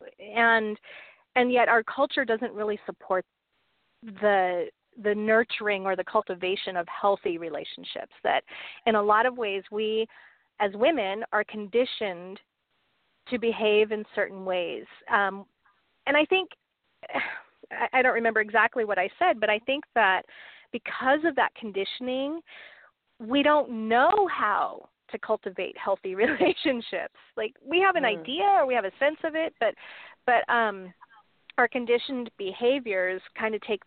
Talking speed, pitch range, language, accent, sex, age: 145 wpm, 200-275 Hz, English, American, female, 40-59